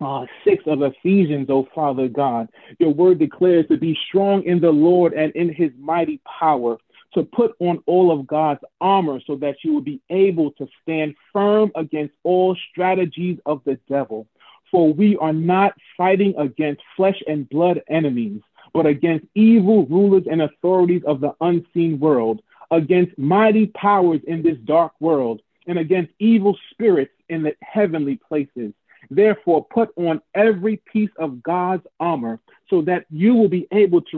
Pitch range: 155-200 Hz